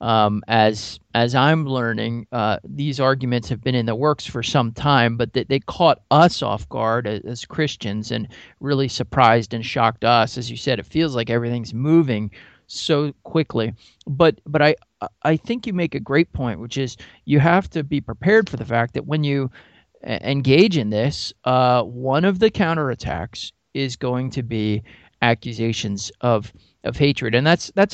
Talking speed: 185 wpm